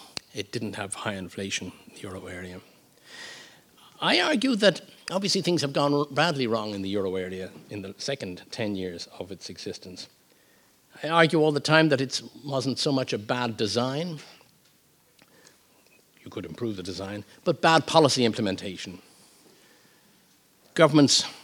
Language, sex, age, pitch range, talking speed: English, male, 60-79, 105-145 Hz, 150 wpm